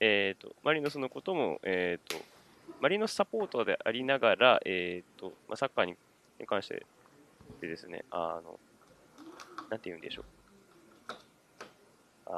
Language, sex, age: Japanese, male, 20-39